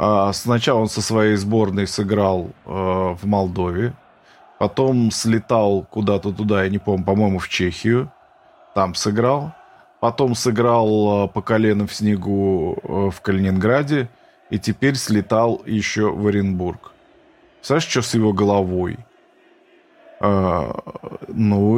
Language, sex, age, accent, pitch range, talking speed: Russian, male, 20-39, native, 100-125 Hz, 120 wpm